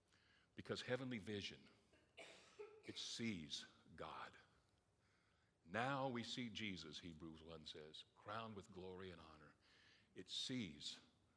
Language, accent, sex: English, American, male